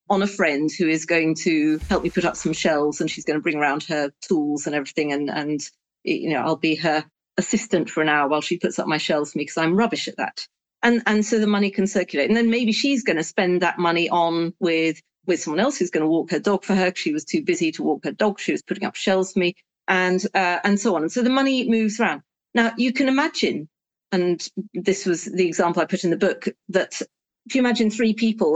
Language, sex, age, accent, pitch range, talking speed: English, female, 40-59, British, 165-210 Hz, 255 wpm